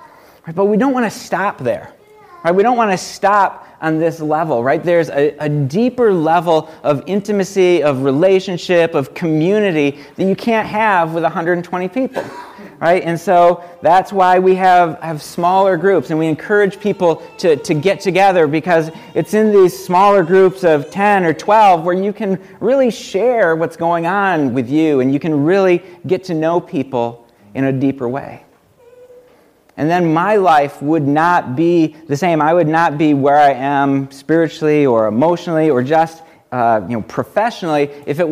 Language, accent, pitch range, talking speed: English, American, 145-190 Hz, 175 wpm